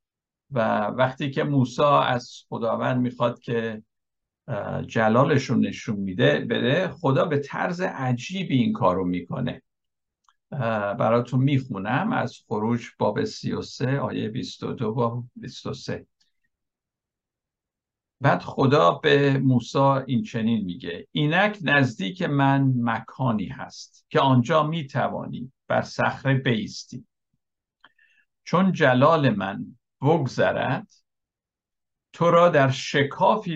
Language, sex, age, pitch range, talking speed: Persian, male, 60-79, 115-145 Hz, 100 wpm